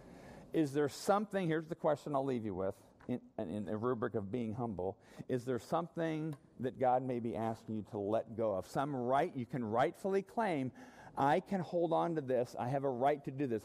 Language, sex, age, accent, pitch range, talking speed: English, male, 40-59, American, 115-155 Hz, 215 wpm